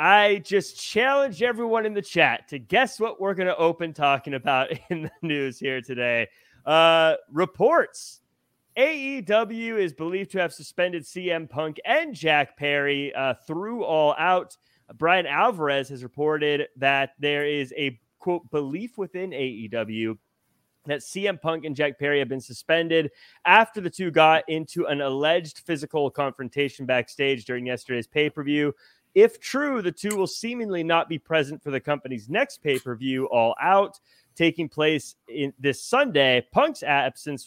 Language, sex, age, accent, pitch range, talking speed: English, male, 30-49, American, 130-165 Hz, 150 wpm